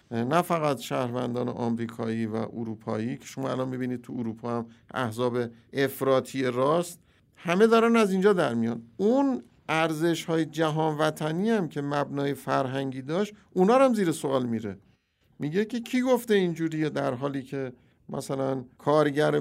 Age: 50-69